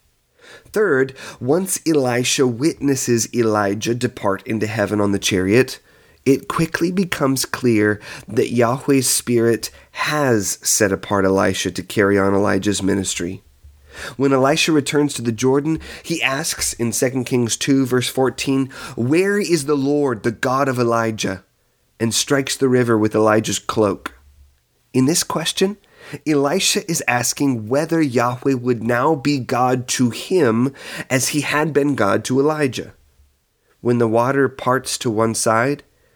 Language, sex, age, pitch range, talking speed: English, male, 30-49, 110-140 Hz, 140 wpm